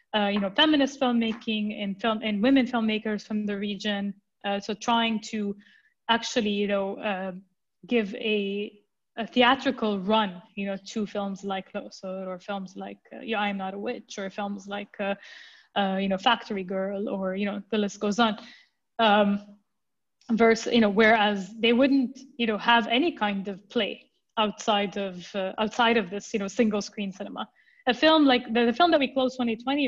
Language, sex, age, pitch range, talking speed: English, female, 20-39, 205-245 Hz, 185 wpm